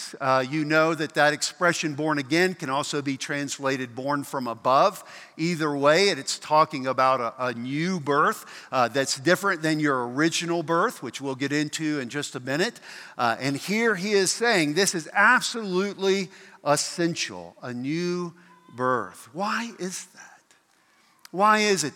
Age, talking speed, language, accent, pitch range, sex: 50-69, 160 wpm, English, American, 140-185 Hz, male